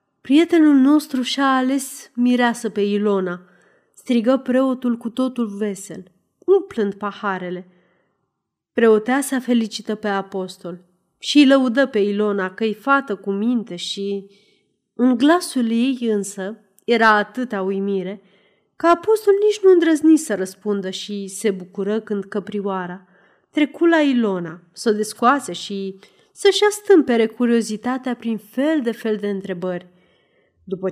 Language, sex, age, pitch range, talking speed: Romanian, female, 30-49, 200-260 Hz, 125 wpm